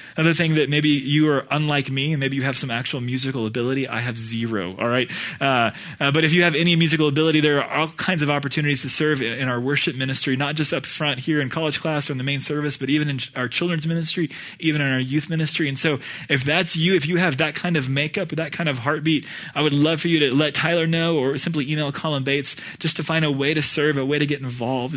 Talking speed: 260 wpm